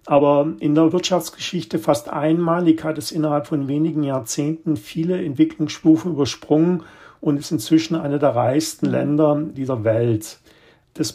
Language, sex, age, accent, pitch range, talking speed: German, male, 50-69, German, 140-160 Hz, 135 wpm